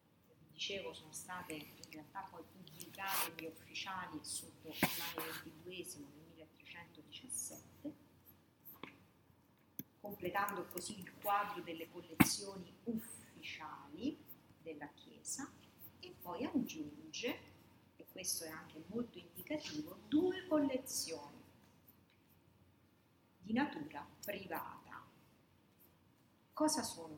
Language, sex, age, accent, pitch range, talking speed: Italian, female, 40-59, native, 155-235 Hz, 85 wpm